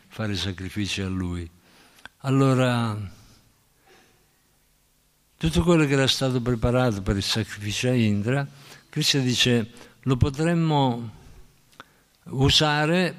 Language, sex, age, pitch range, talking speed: Italian, male, 60-79, 115-140 Hz, 95 wpm